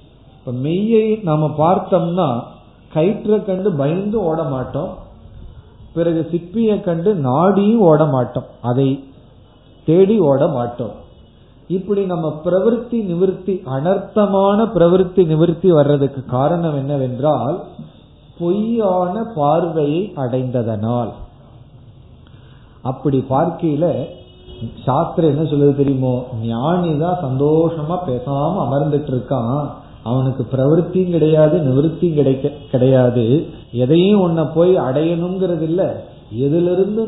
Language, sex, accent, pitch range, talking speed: Tamil, male, native, 130-180 Hz, 75 wpm